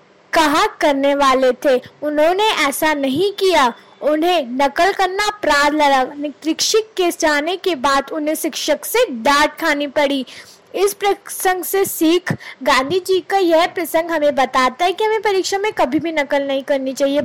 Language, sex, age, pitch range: Hindi, female, 20-39, 285-360 Hz